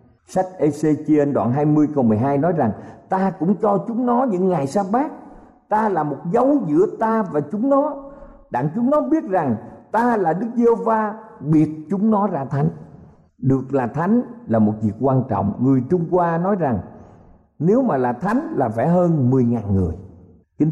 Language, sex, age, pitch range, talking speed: Vietnamese, male, 50-69, 125-200 Hz, 180 wpm